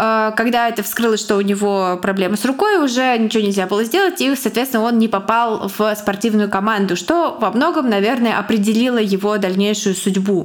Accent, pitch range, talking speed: native, 205-255 Hz, 170 wpm